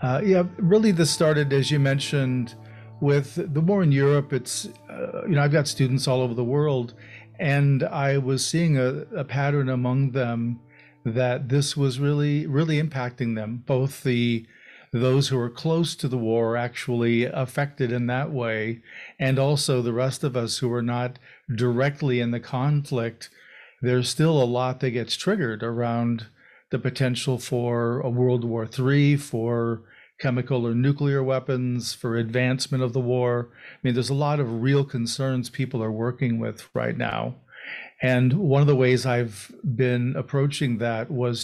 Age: 40-59